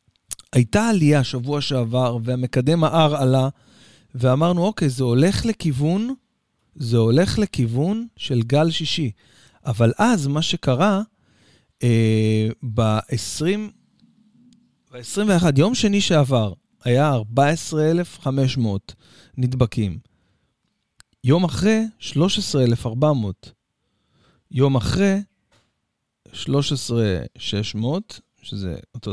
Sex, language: male, Hebrew